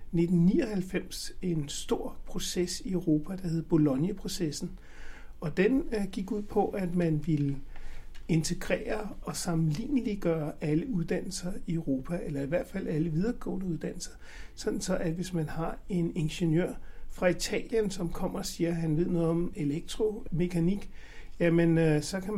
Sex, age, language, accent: male, 60-79, Danish, native